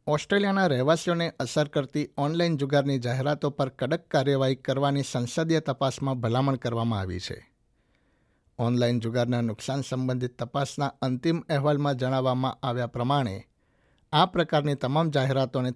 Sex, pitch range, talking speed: male, 120-145 Hz, 120 wpm